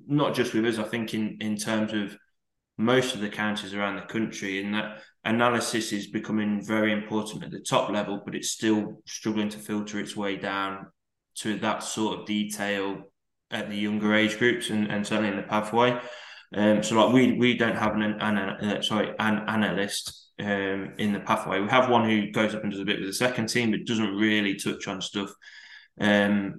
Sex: male